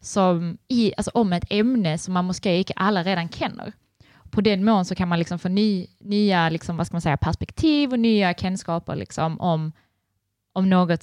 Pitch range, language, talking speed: 160-190 Hz, Danish, 180 wpm